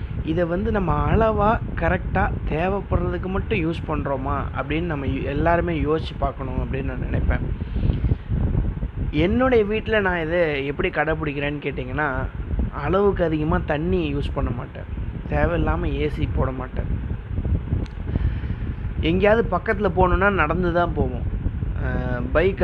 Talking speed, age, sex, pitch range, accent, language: 110 wpm, 20-39, male, 130-180 Hz, native, Tamil